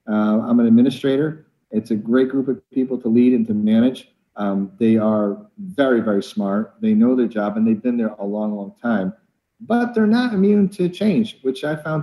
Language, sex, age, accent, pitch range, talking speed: English, male, 40-59, American, 110-155 Hz, 210 wpm